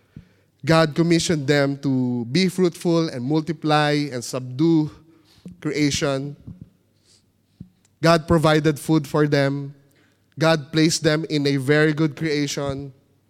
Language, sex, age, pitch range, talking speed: English, male, 20-39, 110-155 Hz, 110 wpm